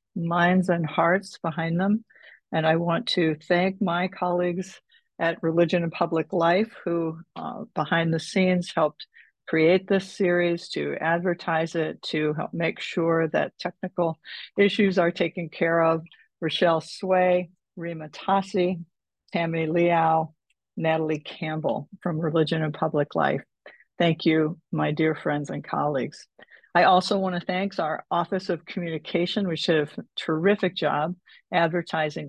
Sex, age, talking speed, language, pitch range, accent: female, 50-69, 140 wpm, English, 160-185 Hz, American